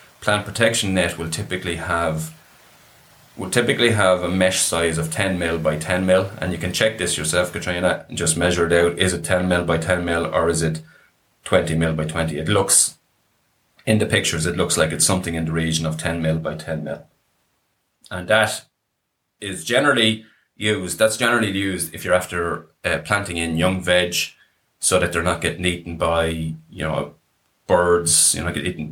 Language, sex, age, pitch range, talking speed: English, male, 30-49, 80-95 Hz, 190 wpm